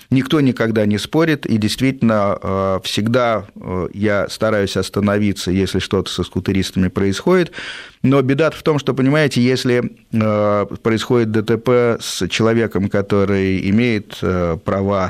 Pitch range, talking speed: 95-120 Hz, 115 wpm